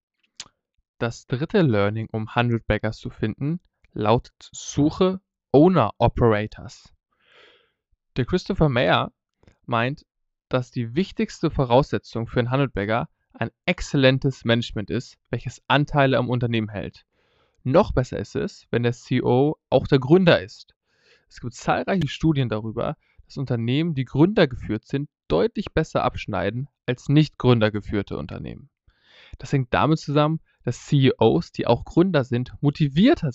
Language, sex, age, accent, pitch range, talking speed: German, male, 20-39, German, 115-155 Hz, 130 wpm